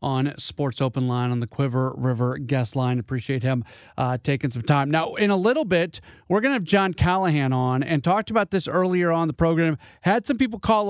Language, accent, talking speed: English, American, 215 wpm